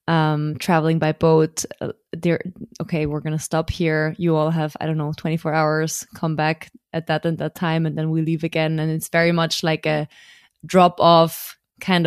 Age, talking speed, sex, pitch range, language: 20-39, 195 wpm, female, 160-180 Hz, German